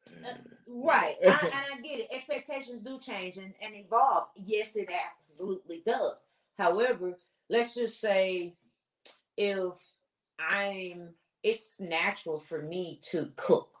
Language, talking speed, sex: English, 120 wpm, female